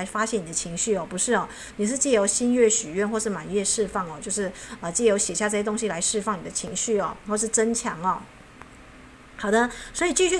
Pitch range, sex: 185-225 Hz, female